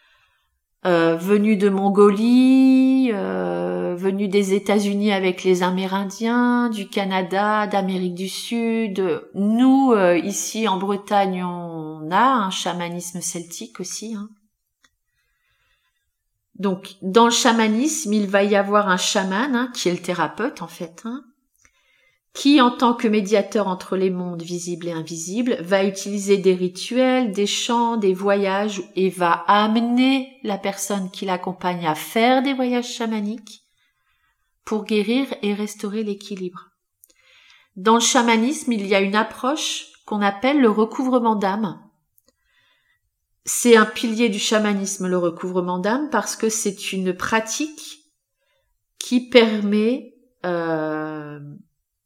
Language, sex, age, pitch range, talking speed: French, female, 30-49, 185-235 Hz, 130 wpm